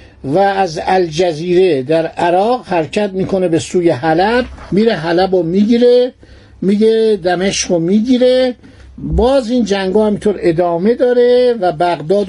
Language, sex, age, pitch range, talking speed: Persian, male, 60-79, 165-215 Hz, 125 wpm